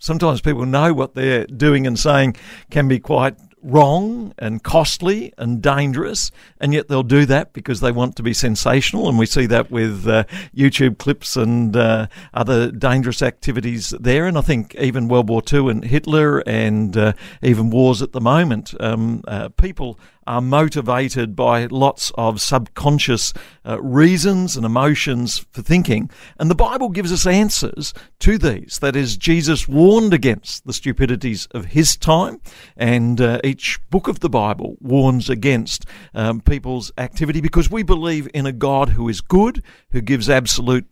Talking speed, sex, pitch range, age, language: 165 wpm, male, 120-150 Hz, 50-69, English